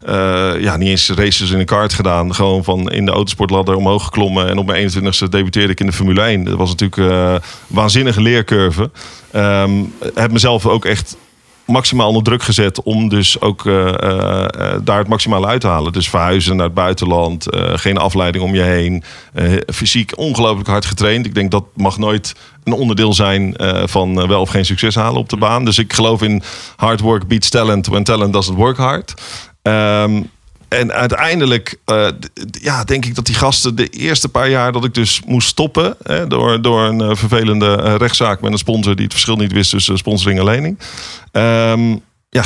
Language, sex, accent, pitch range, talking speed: Dutch, male, Dutch, 95-115 Hz, 205 wpm